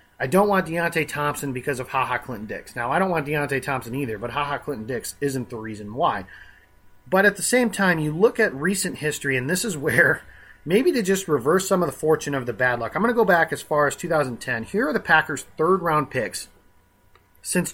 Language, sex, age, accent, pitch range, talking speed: English, male, 30-49, American, 120-170 Hz, 230 wpm